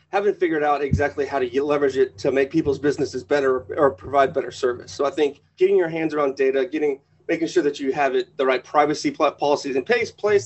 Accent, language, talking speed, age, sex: American, English, 220 wpm, 30-49, male